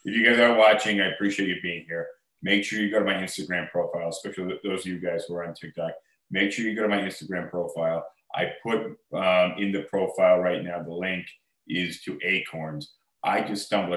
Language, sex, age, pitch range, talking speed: English, male, 30-49, 90-100 Hz, 220 wpm